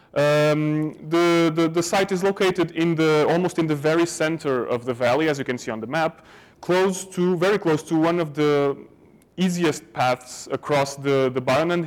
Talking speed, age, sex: 190 wpm, 30-49, male